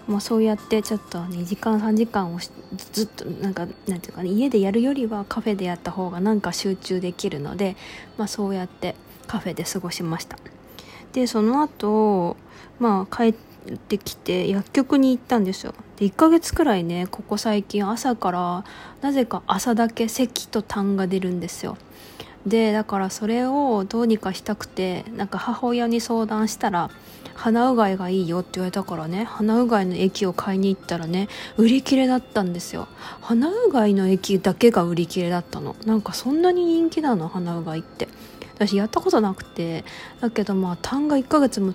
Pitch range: 185-230 Hz